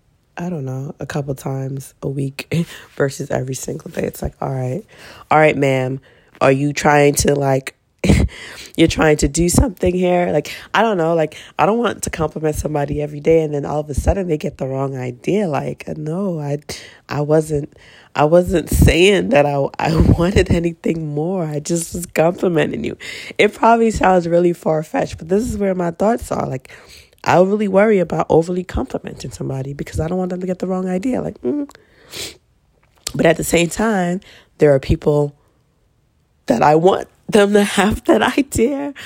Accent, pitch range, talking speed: American, 145-190 Hz, 190 wpm